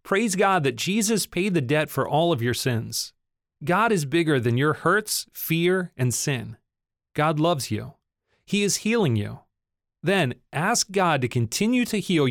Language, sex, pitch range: English, male, 120-185 Hz